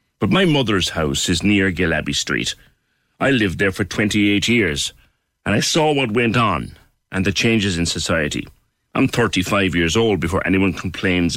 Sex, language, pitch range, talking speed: male, English, 90-125 Hz, 170 wpm